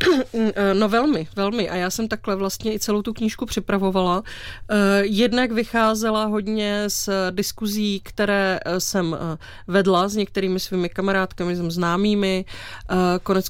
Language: Czech